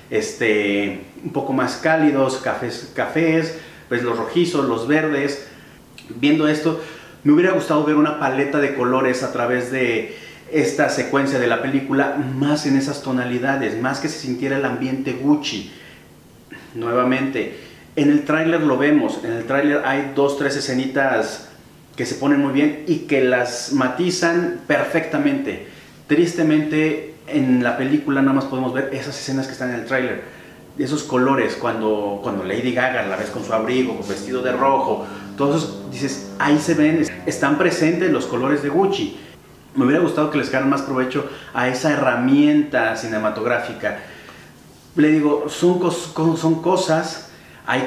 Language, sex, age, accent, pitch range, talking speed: Spanish, male, 30-49, Mexican, 130-160 Hz, 155 wpm